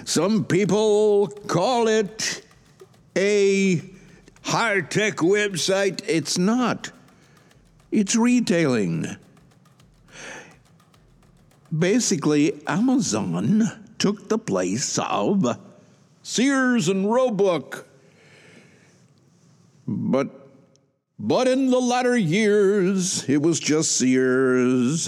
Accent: American